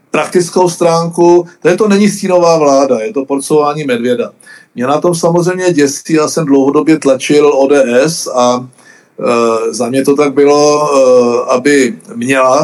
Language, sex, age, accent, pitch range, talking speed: Czech, male, 50-69, native, 145-190 Hz, 145 wpm